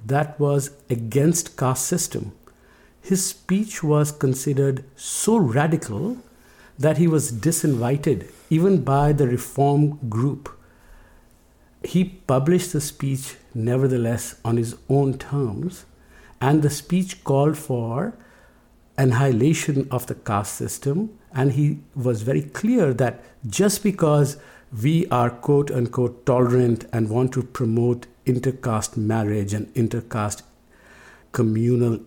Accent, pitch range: Indian, 115-145 Hz